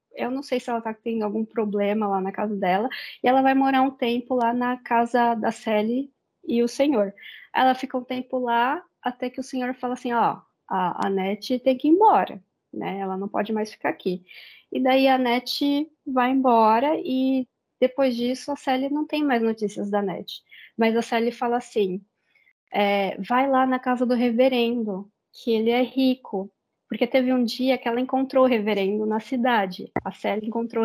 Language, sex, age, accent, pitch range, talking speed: Portuguese, female, 20-39, Brazilian, 215-260 Hz, 195 wpm